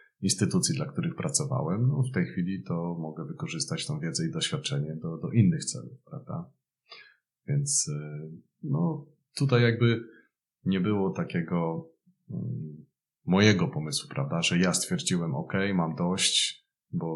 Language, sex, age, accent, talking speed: Polish, male, 30-49, native, 130 wpm